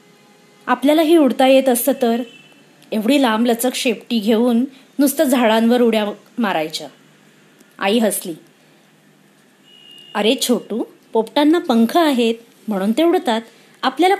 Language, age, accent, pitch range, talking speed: Marathi, 30-49, native, 220-285 Hz, 110 wpm